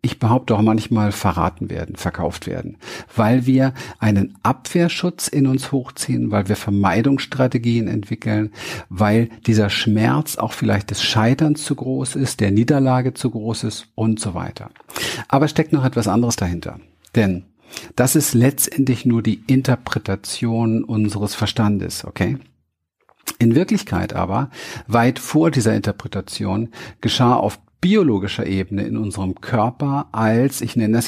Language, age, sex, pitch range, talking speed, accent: German, 50-69, male, 105-130 Hz, 140 wpm, German